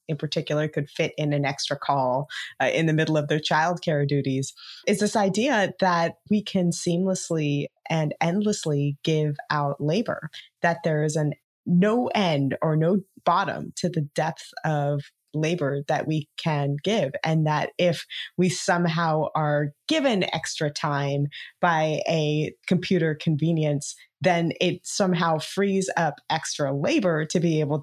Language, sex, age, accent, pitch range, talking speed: English, female, 20-39, American, 155-195 Hz, 150 wpm